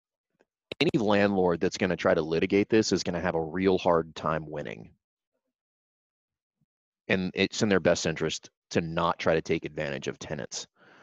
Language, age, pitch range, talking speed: English, 30-49, 80-100 Hz, 175 wpm